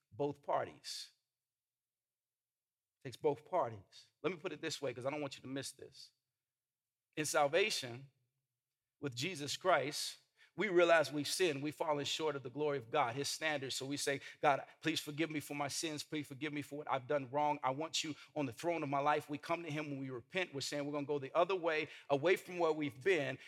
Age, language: 50-69, English